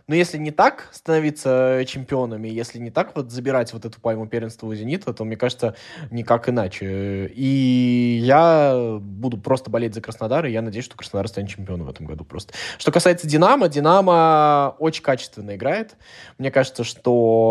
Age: 20-39